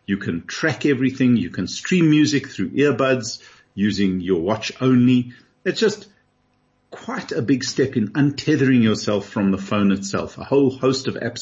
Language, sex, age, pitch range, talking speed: English, male, 50-69, 100-130 Hz, 170 wpm